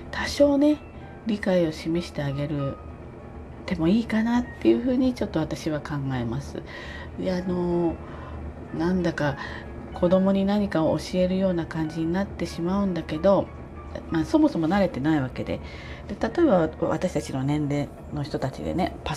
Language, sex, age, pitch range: Japanese, female, 40-59, 135-195 Hz